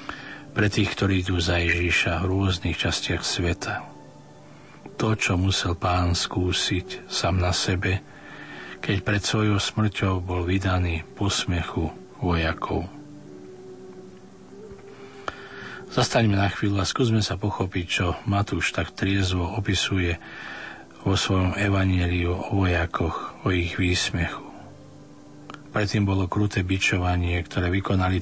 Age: 40-59